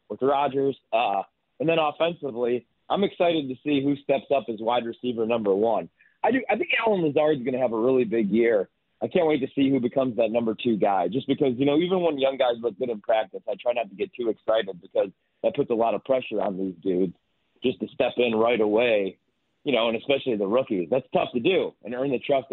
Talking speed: 240 wpm